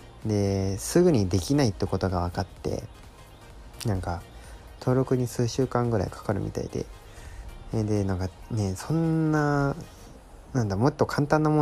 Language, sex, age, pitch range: Japanese, male, 20-39, 90-115 Hz